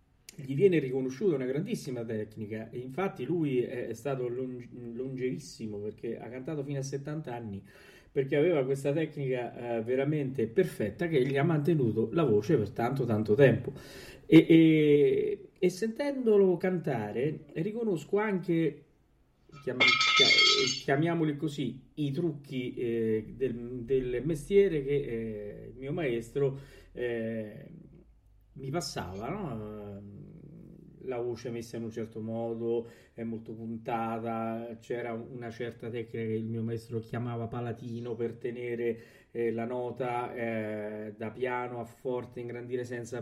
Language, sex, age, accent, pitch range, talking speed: Italian, male, 40-59, native, 115-155 Hz, 125 wpm